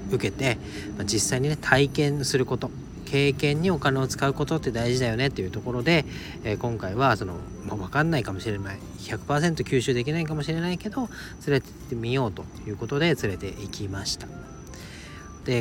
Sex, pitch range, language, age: male, 100-140 Hz, Japanese, 40-59